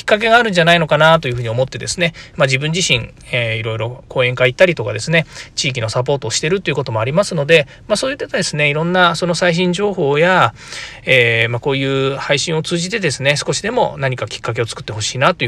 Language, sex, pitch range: Japanese, male, 125-180 Hz